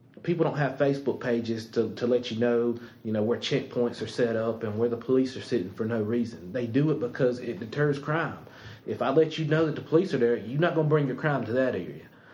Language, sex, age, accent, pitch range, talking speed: English, male, 30-49, American, 120-150 Hz, 260 wpm